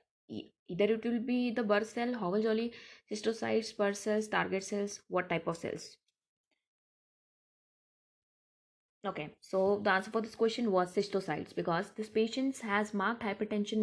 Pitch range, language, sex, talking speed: 175-225 Hz, English, female, 145 wpm